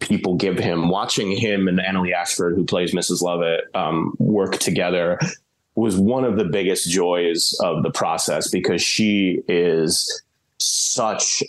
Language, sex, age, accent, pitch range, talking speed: English, male, 30-49, American, 90-120 Hz, 145 wpm